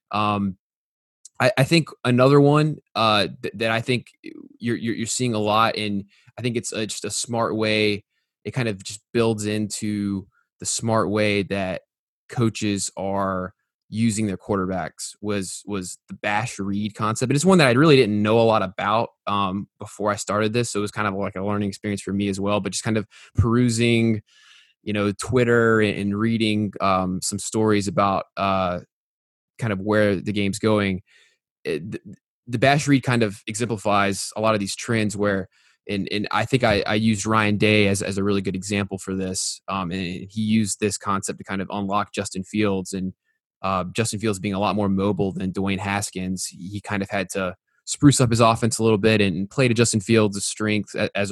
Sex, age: male, 20-39